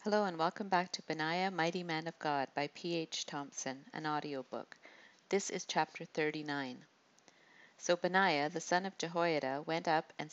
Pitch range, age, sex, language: 150-175 Hz, 50-69, female, English